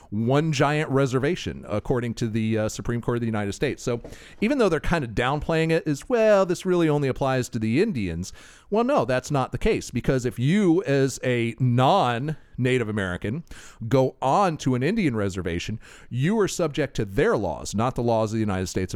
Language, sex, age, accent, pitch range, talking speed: English, male, 40-59, American, 115-150 Hz, 195 wpm